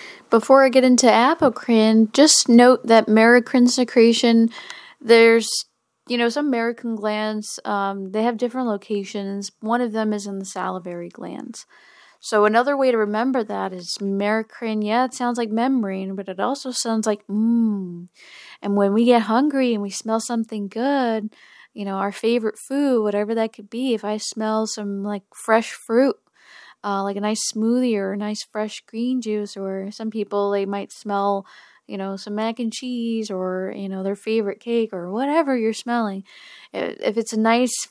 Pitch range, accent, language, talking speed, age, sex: 210-245 Hz, American, English, 175 wpm, 10-29, female